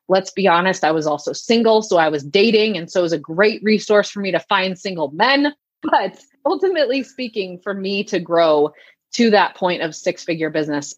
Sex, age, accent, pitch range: female, 30-49, American, 160-200 Hz